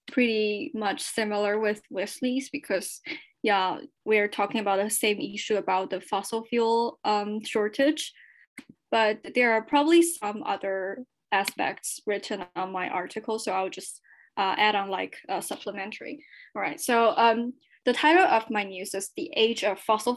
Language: English